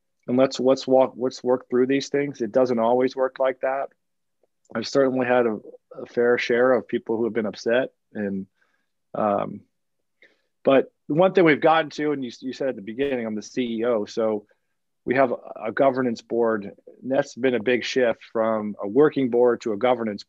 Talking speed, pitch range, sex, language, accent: 200 wpm, 115-135 Hz, male, English, American